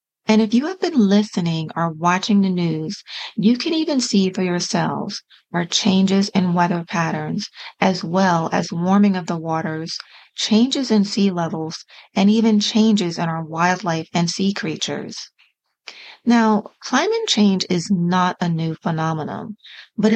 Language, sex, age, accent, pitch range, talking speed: English, female, 40-59, American, 175-220 Hz, 150 wpm